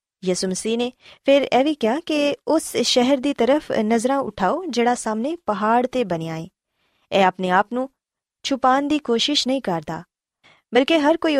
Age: 20-39